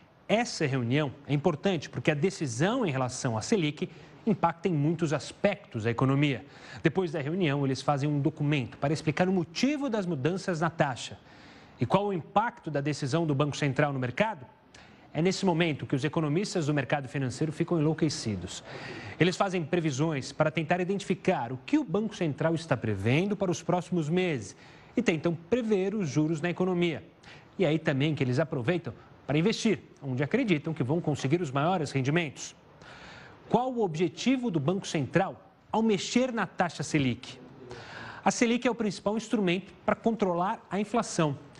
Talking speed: 165 wpm